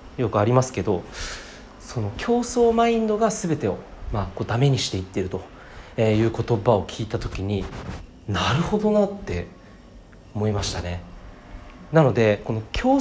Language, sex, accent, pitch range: Japanese, male, native, 100-150 Hz